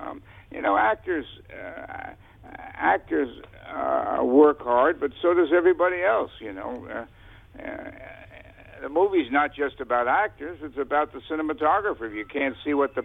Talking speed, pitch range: 160 wpm, 115-150 Hz